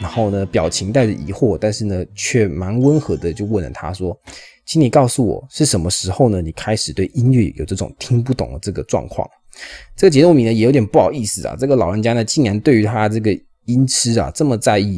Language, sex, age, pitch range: Chinese, male, 20-39, 95-125 Hz